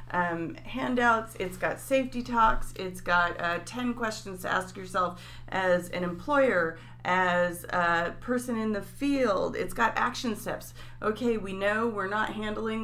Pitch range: 185-230 Hz